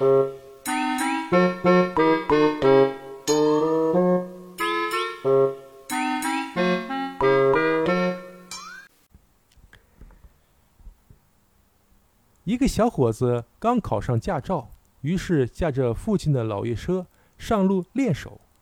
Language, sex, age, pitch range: Chinese, male, 50-69, 115-195 Hz